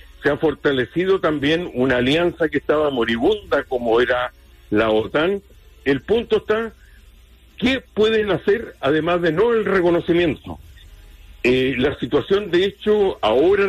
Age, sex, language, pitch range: 60-79, male, English, 125-185 Hz